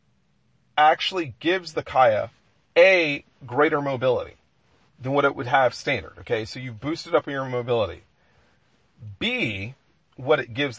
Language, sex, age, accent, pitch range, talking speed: English, male, 40-59, American, 125-170 Hz, 140 wpm